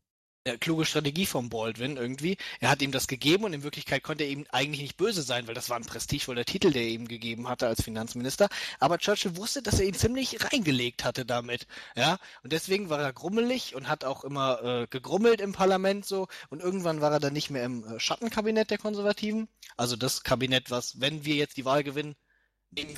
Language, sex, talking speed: German, male, 215 wpm